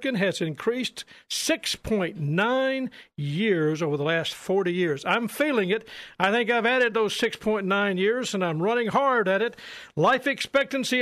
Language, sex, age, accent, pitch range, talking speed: English, male, 50-69, American, 175-240 Hz, 145 wpm